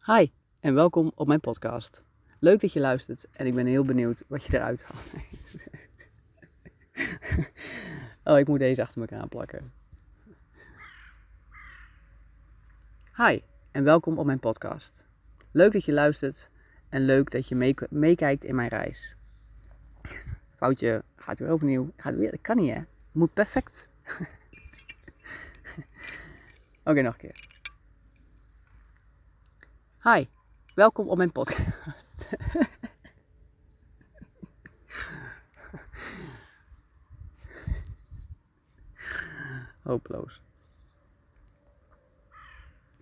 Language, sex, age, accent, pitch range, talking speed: Dutch, female, 30-49, Dutch, 95-150 Hz, 95 wpm